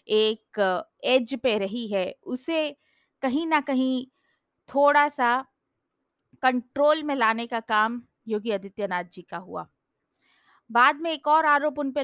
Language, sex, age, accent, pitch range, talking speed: Hindi, female, 20-39, native, 205-255 Hz, 140 wpm